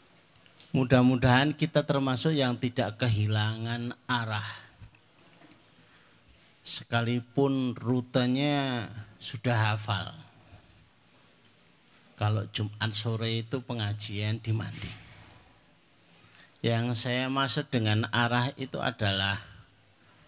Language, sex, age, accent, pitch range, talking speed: Indonesian, male, 50-69, native, 105-130 Hz, 75 wpm